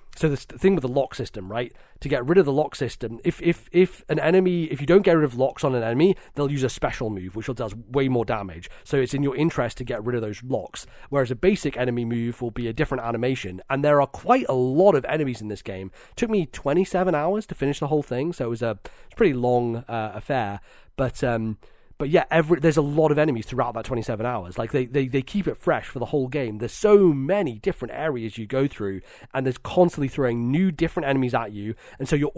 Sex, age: male, 30-49